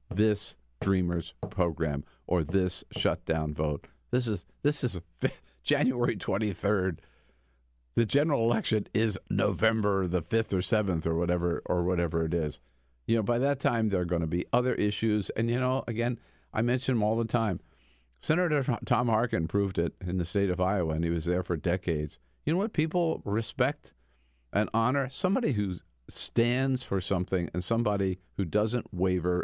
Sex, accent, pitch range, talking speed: male, American, 80-110 Hz, 170 wpm